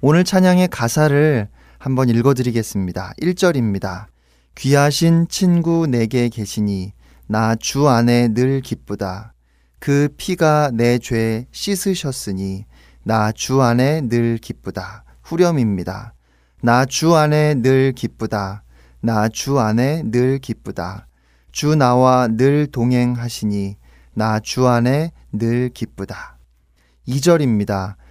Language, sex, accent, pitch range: Korean, male, native, 100-135 Hz